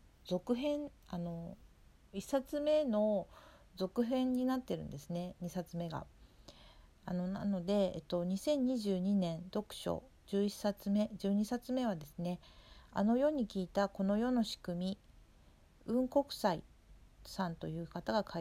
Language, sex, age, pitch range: Japanese, female, 50-69, 170-225 Hz